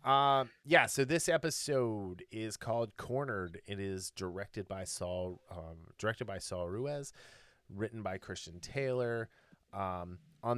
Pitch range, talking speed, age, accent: 90-120 Hz, 135 wpm, 30-49, American